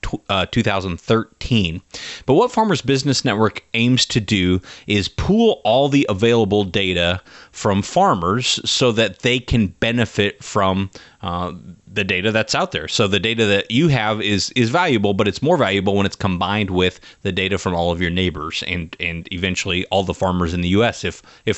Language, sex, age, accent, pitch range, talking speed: English, male, 30-49, American, 95-115 Hz, 185 wpm